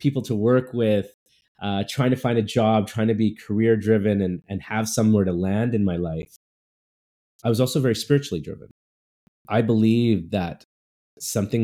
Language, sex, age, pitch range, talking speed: English, male, 20-39, 100-120 Hz, 175 wpm